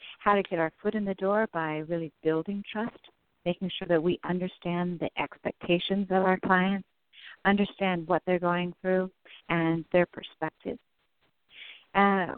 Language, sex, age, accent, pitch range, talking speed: English, female, 50-69, American, 160-195 Hz, 150 wpm